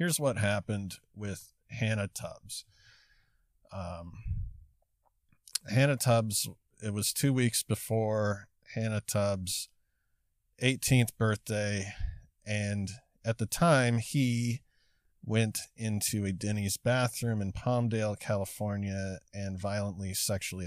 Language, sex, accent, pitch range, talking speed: English, male, American, 95-115 Hz, 100 wpm